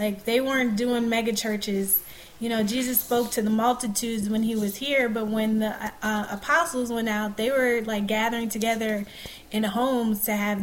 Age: 20-39